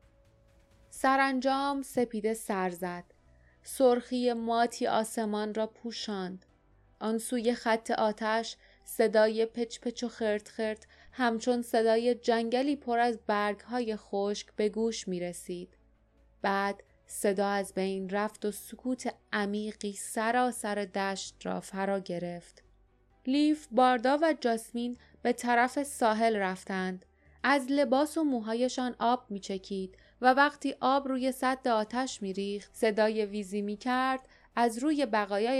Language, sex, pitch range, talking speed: Persian, female, 205-255 Hz, 120 wpm